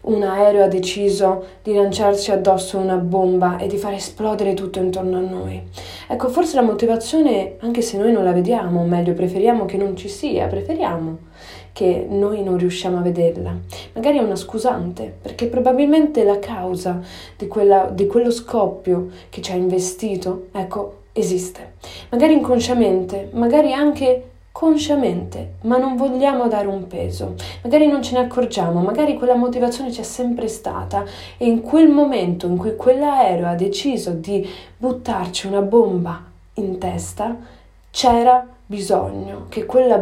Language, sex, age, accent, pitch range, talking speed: Italian, female, 20-39, native, 180-240 Hz, 150 wpm